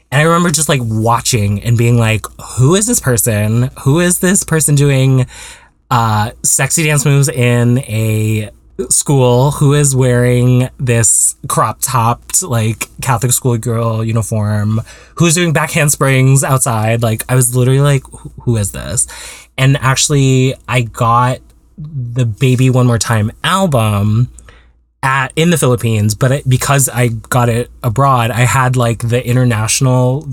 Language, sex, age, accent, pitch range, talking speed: English, male, 20-39, American, 110-135 Hz, 150 wpm